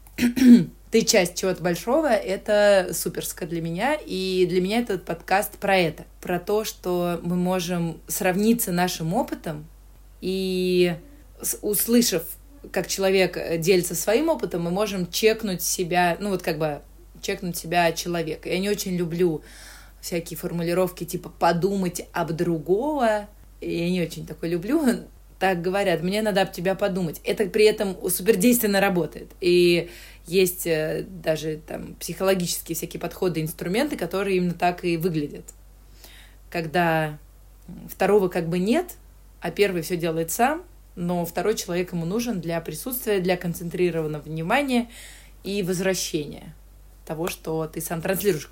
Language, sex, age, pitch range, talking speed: Russian, female, 20-39, 170-200 Hz, 135 wpm